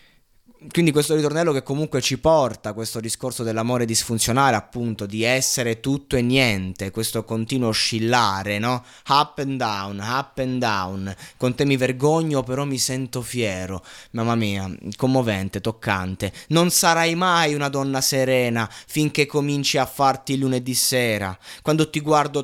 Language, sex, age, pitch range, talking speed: Italian, male, 20-39, 105-140 Hz, 145 wpm